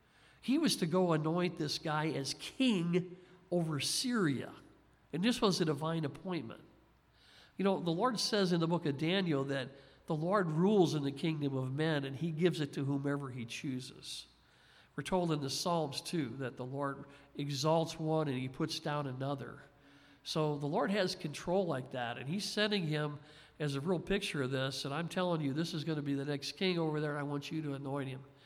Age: 50-69